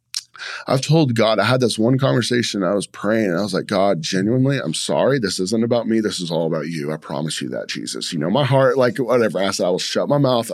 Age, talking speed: 30-49, 260 wpm